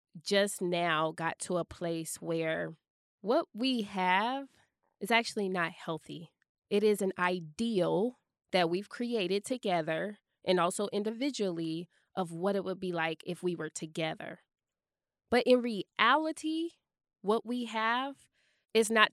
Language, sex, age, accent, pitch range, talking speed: English, female, 20-39, American, 175-220 Hz, 135 wpm